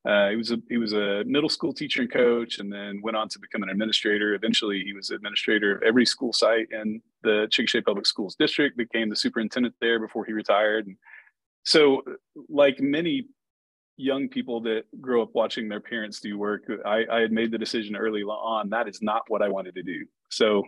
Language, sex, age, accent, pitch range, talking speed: English, male, 30-49, American, 105-120 Hz, 210 wpm